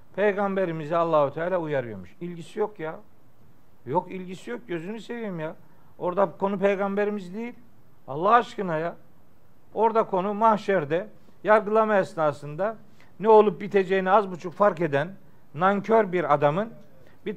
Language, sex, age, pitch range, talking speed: Turkish, male, 50-69, 160-205 Hz, 125 wpm